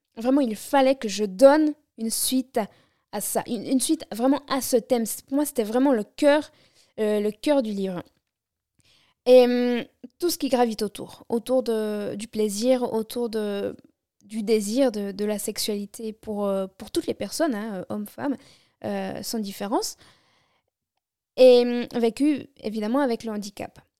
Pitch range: 210-275 Hz